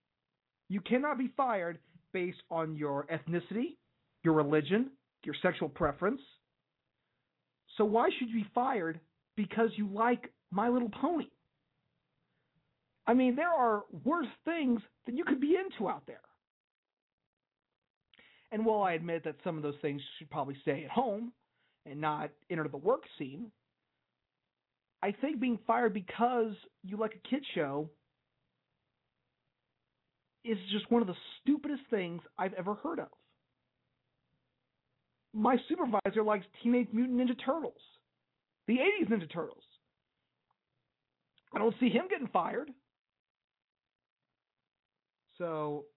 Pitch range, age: 165-235 Hz, 40-59